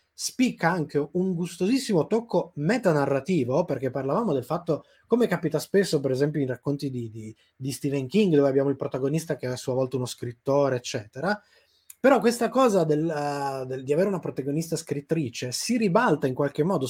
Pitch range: 135-200 Hz